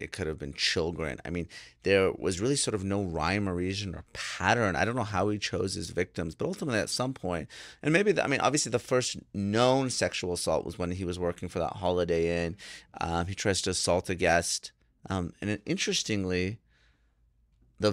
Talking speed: 205 wpm